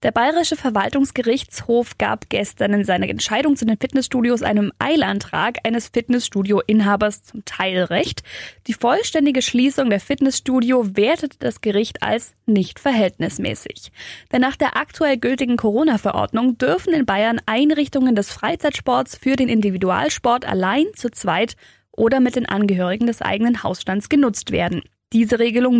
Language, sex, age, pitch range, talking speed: German, female, 10-29, 215-275 Hz, 135 wpm